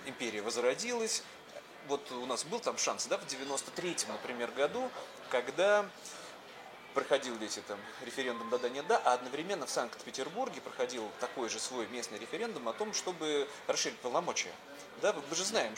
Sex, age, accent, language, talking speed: male, 30-49, native, Russian, 150 wpm